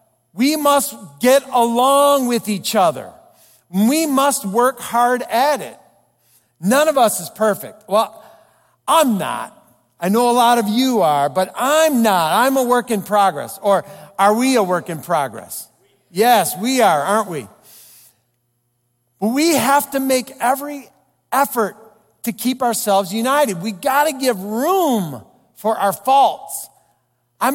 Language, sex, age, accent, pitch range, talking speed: English, male, 50-69, American, 205-285 Hz, 145 wpm